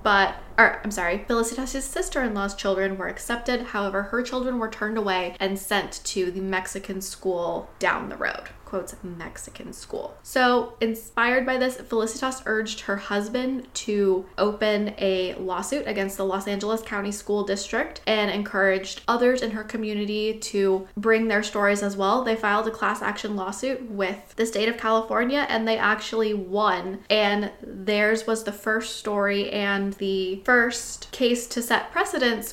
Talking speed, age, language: 160 wpm, 10-29, English